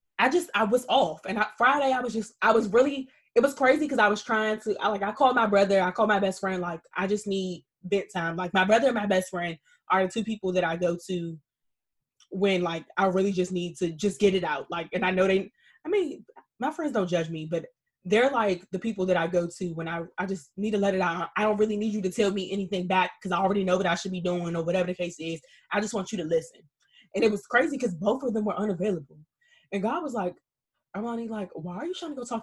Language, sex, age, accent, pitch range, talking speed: English, female, 20-39, American, 175-230 Hz, 270 wpm